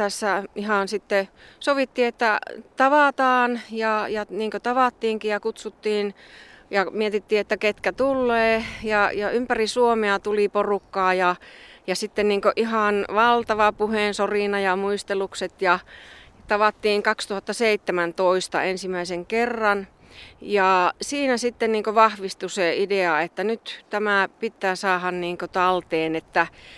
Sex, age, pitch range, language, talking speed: female, 30-49, 190-220 Hz, Finnish, 120 wpm